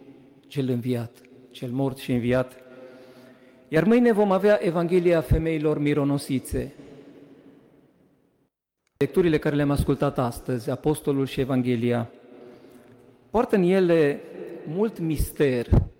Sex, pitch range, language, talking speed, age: male, 130-175 Hz, Romanian, 100 wpm, 40-59